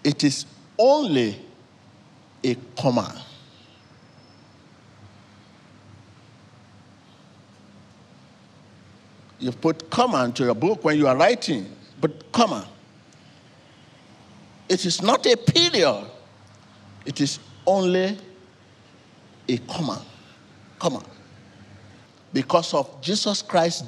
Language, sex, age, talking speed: English, male, 50-69, 80 wpm